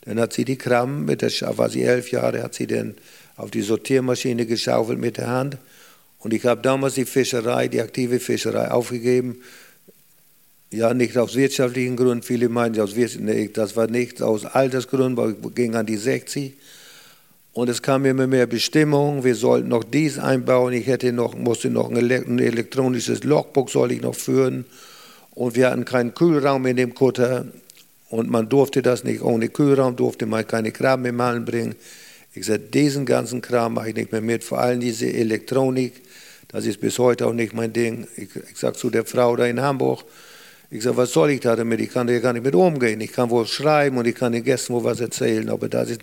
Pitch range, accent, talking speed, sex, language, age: 115-135 Hz, German, 200 wpm, male, German, 50-69